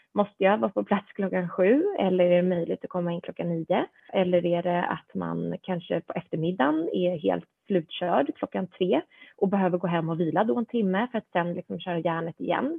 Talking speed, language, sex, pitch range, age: 210 wpm, Swedish, female, 175-225 Hz, 30-49